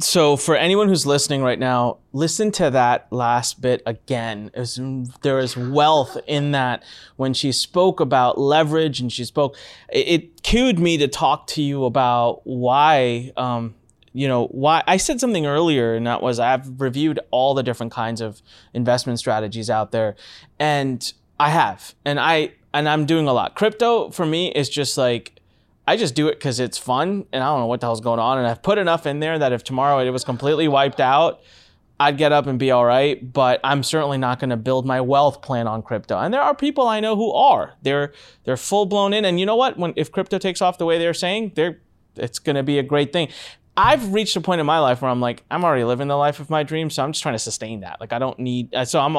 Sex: male